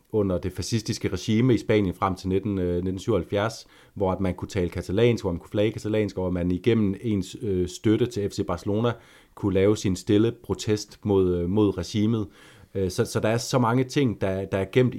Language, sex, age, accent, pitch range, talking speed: Danish, male, 30-49, native, 95-110 Hz, 190 wpm